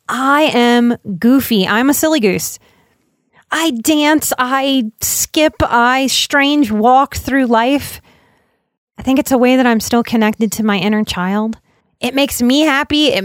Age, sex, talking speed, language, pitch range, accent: 30-49, female, 155 wpm, English, 210-280 Hz, American